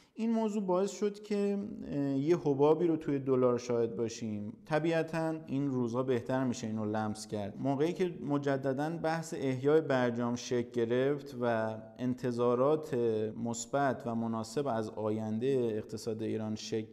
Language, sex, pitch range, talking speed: Persian, male, 115-145 Hz, 140 wpm